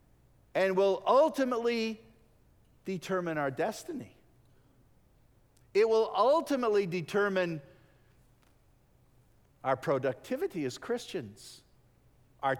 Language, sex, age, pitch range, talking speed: English, male, 50-69, 130-215 Hz, 70 wpm